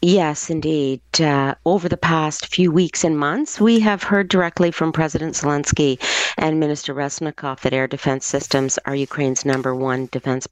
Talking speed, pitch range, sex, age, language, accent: 165 wpm, 130-155 Hz, female, 50-69, English, American